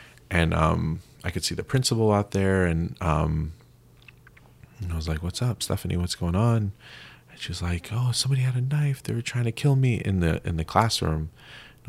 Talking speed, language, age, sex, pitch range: 205 wpm, English, 30-49, male, 85-115 Hz